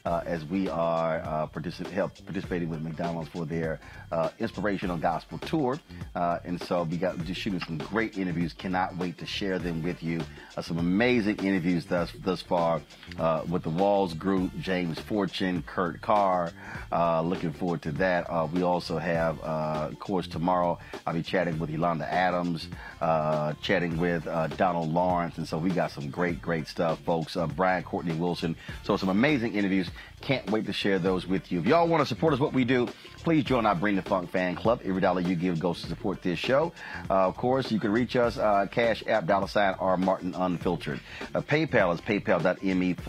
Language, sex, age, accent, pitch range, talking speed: English, male, 40-59, American, 85-100 Hz, 200 wpm